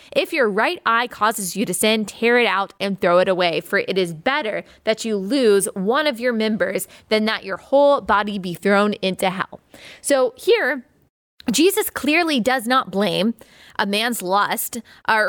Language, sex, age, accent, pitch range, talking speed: English, female, 20-39, American, 205-280 Hz, 180 wpm